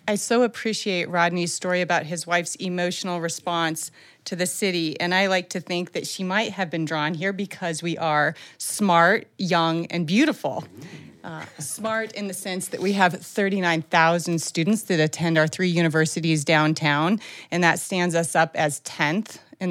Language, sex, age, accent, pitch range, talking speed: English, female, 30-49, American, 160-195 Hz, 170 wpm